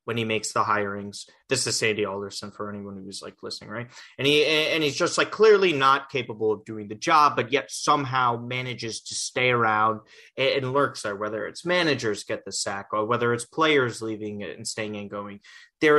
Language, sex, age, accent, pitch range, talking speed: English, male, 30-49, American, 110-160 Hz, 205 wpm